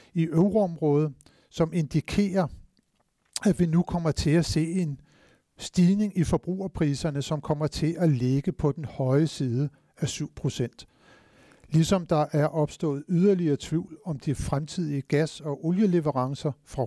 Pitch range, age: 135-165 Hz, 60-79